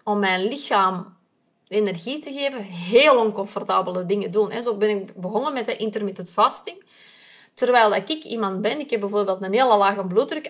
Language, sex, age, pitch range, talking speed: Dutch, female, 20-39, 205-265 Hz, 165 wpm